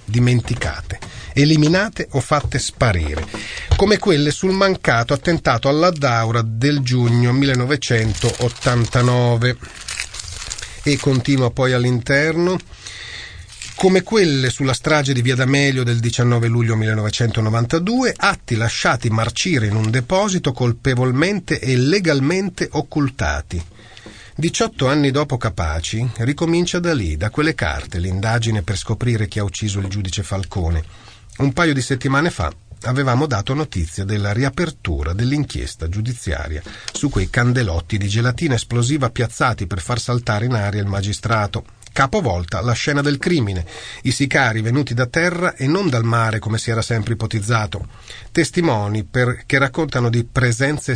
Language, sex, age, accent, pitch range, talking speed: Italian, male, 30-49, native, 105-140 Hz, 130 wpm